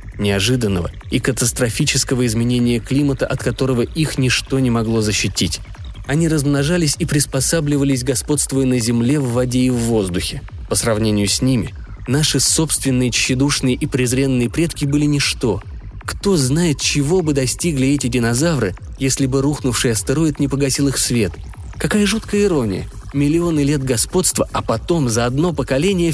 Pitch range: 110-150 Hz